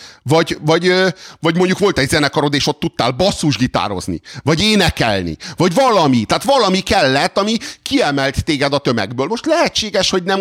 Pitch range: 135-200 Hz